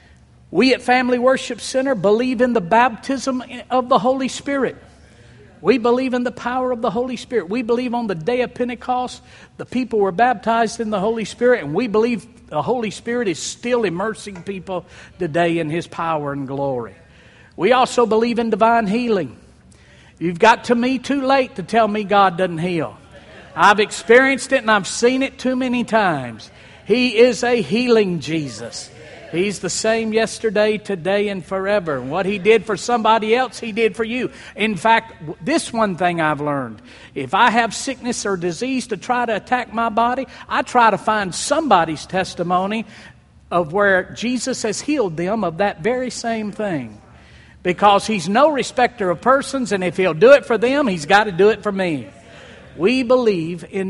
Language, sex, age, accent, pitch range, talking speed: English, male, 50-69, American, 185-245 Hz, 180 wpm